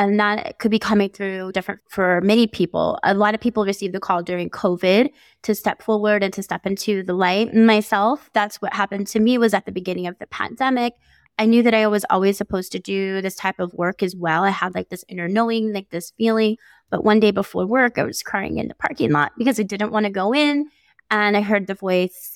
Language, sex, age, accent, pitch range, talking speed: English, female, 20-39, American, 185-225 Hz, 240 wpm